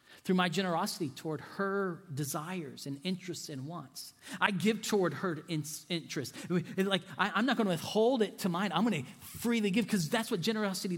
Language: English